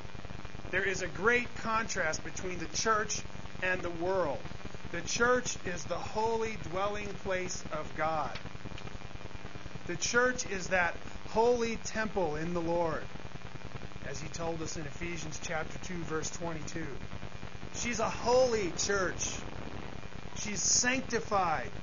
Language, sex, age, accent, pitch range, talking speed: English, male, 30-49, American, 170-240 Hz, 125 wpm